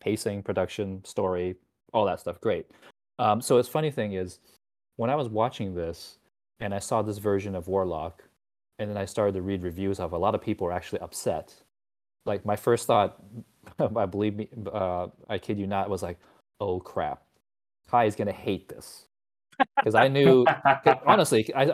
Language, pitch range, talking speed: English, 95-115 Hz, 190 wpm